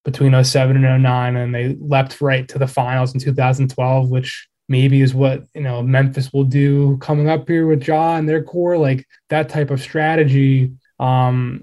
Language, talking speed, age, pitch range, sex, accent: English, 185 wpm, 20-39, 130-145 Hz, male, American